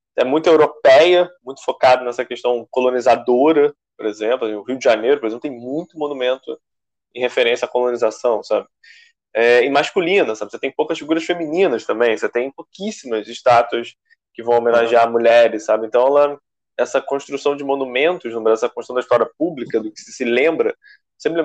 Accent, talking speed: Brazilian, 165 wpm